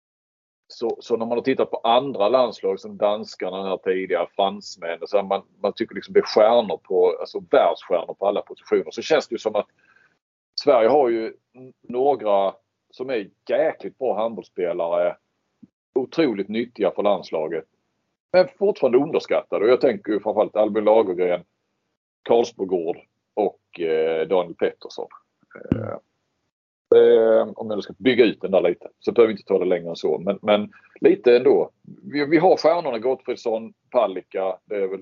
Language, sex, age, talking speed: English, male, 40-59, 155 wpm